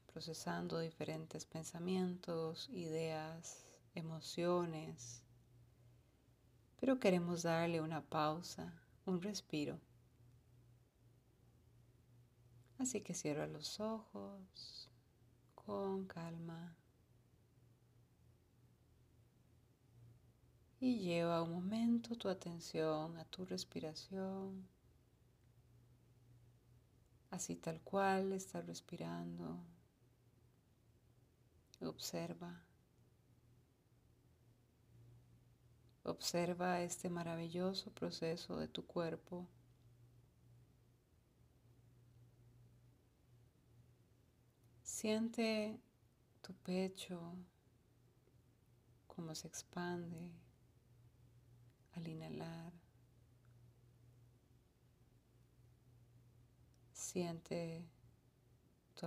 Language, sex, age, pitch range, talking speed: Spanish, female, 40-59, 120-170 Hz, 50 wpm